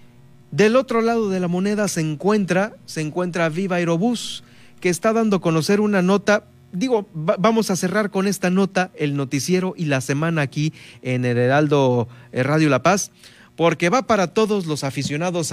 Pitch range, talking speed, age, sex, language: 130-185 Hz, 175 wpm, 40-59, male, Spanish